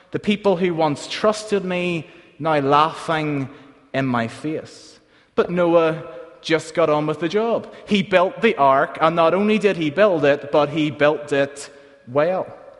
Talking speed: 165 wpm